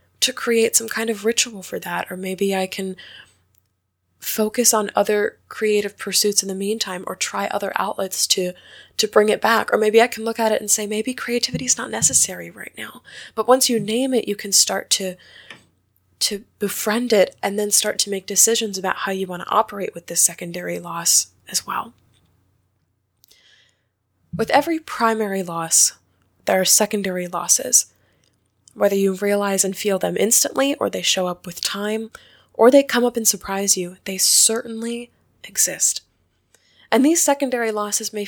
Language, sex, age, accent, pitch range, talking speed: English, female, 20-39, American, 180-225 Hz, 170 wpm